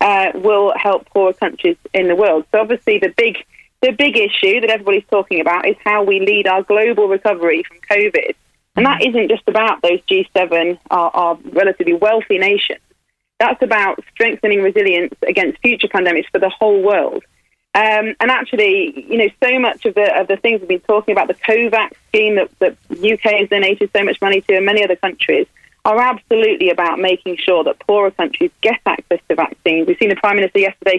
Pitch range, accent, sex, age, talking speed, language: 190-250 Hz, British, female, 30-49, 195 wpm, English